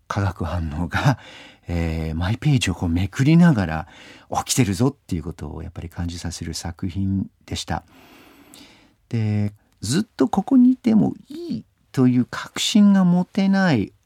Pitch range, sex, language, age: 90-140 Hz, male, Japanese, 50-69